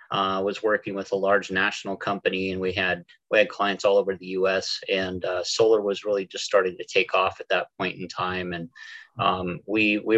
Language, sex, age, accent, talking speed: English, male, 30-49, American, 225 wpm